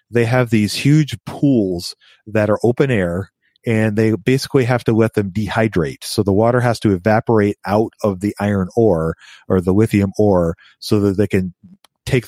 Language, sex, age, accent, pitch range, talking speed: English, male, 40-59, American, 100-120 Hz, 180 wpm